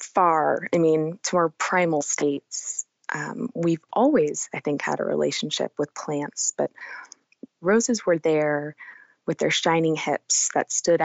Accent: American